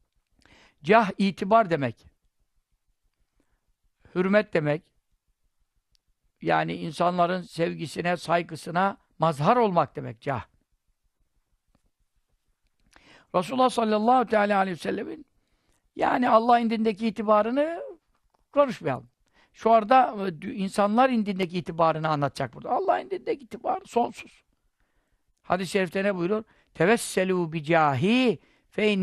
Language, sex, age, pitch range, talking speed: Turkish, male, 60-79, 170-215 Hz, 85 wpm